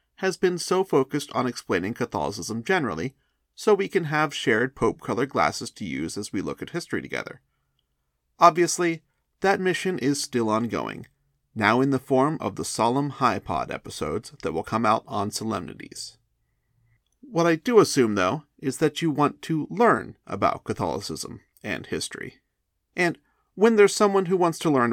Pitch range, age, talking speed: 120-170 Hz, 30-49, 165 wpm